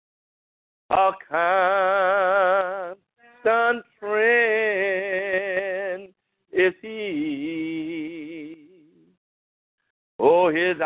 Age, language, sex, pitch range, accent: 50-69, English, male, 160-230 Hz, American